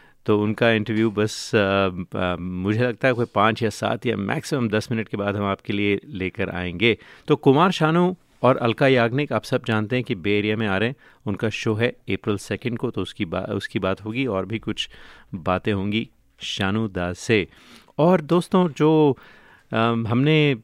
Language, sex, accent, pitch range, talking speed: Hindi, male, native, 105-130 Hz, 185 wpm